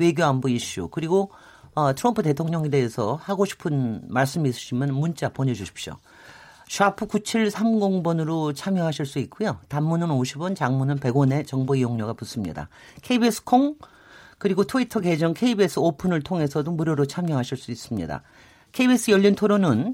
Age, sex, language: 40-59, male, Korean